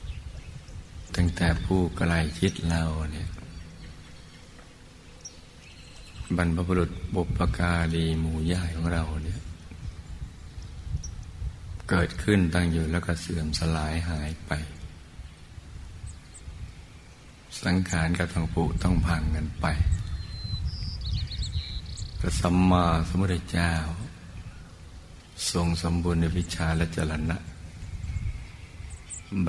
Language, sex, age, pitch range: Thai, male, 60-79, 80-90 Hz